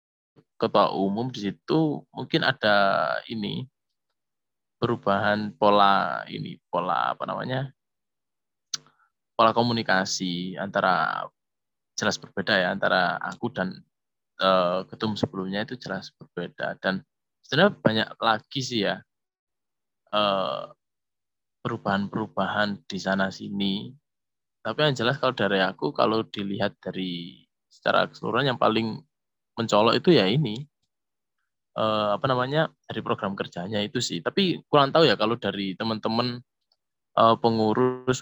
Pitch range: 100-125 Hz